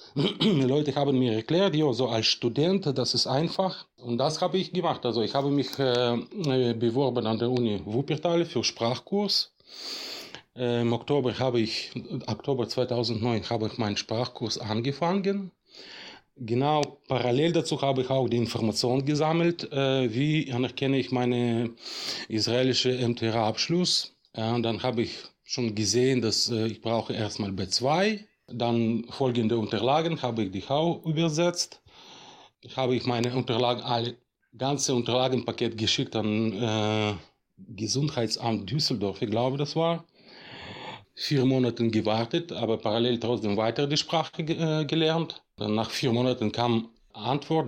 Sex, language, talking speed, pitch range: male, German, 140 wpm, 115-145 Hz